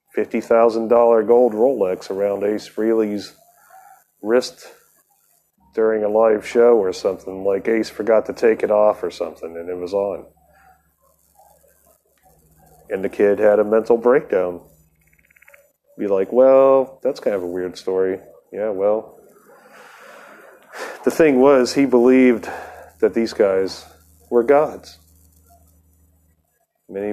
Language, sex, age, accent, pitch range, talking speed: English, male, 40-59, American, 85-120 Hz, 120 wpm